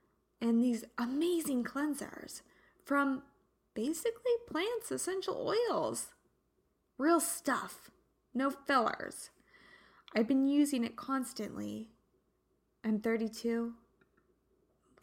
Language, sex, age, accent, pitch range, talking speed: English, female, 20-39, American, 225-305 Hz, 80 wpm